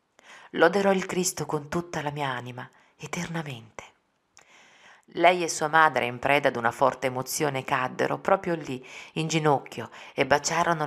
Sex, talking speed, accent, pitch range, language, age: female, 145 wpm, native, 125-160 Hz, Italian, 40-59